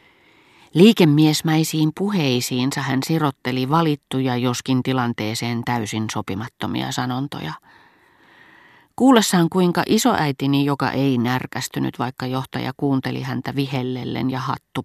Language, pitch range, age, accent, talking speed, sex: Finnish, 125-155 Hz, 30-49, native, 95 wpm, female